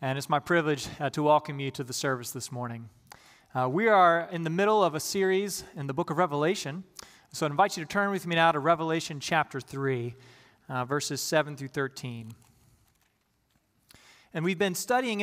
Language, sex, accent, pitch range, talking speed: English, male, American, 135-180 Hz, 195 wpm